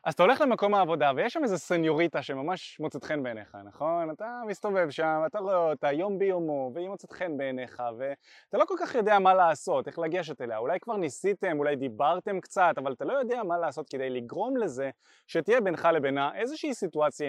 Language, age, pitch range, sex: Hebrew, 20-39, 150-220 Hz, male